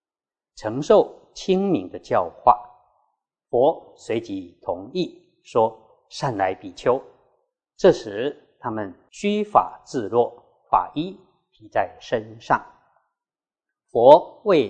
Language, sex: Chinese, male